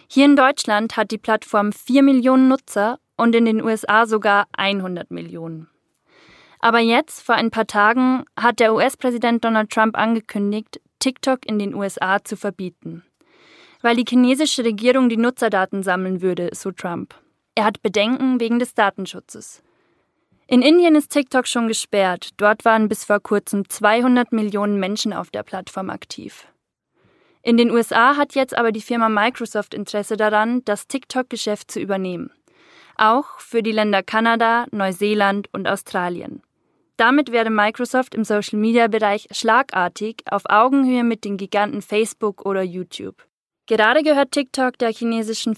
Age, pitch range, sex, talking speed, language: 20-39, 200-240 Hz, female, 145 wpm, German